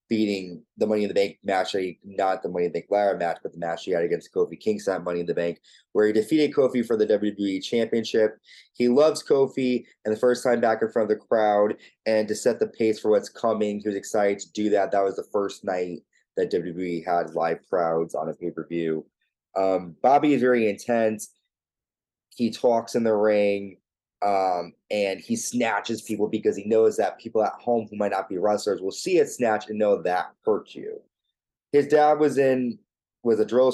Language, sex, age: English, male, 20-39